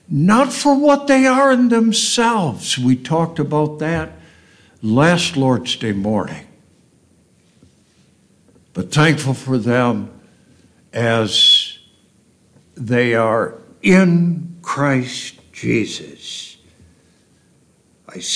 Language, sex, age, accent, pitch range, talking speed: English, male, 60-79, American, 115-170 Hz, 85 wpm